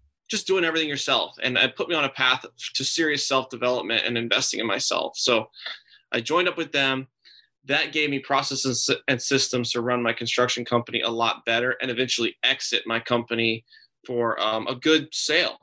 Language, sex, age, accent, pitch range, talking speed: English, male, 20-39, American, 120-135 Hz, 185 wpm